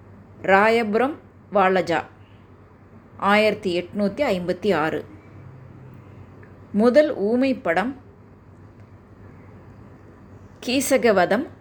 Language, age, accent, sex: Tamil, 20-39, native, female